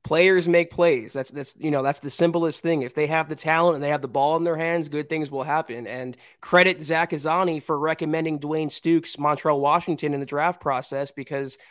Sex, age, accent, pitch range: male, 20-39, American, 150-180 Hz